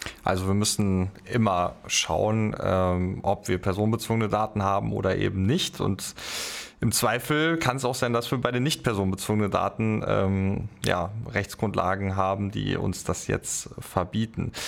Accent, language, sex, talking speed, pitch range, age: German, German, male, 145 wpm, 100-125 Hz, 20-39